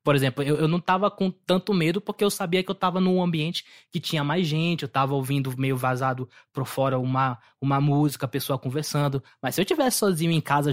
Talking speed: 230 wpm